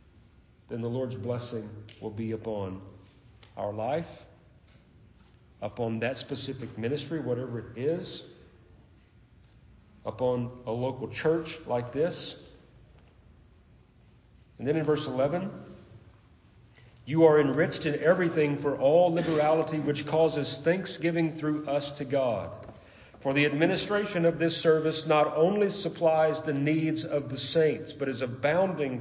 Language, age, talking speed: English, 40-59, 120 wpm